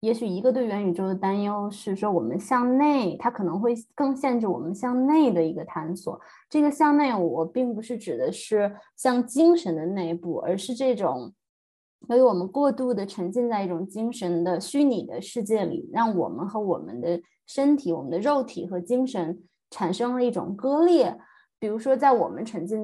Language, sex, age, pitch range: Chinese, female, 20-39, 180-250 Hz